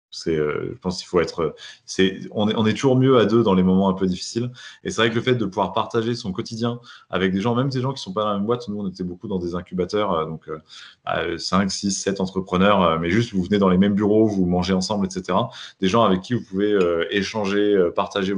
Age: 20-39